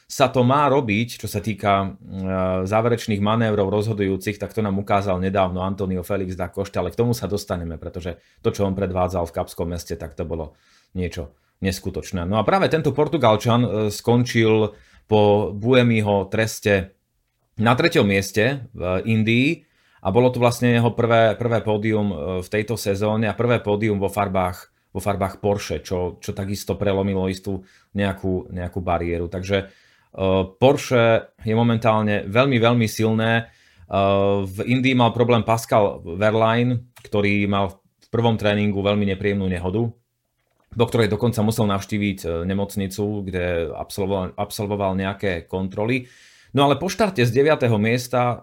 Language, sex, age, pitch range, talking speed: Slovak, male, 30-49, 95-115 Hz, 145 wpm